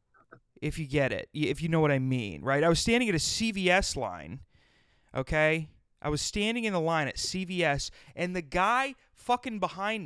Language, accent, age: English, American, 30-49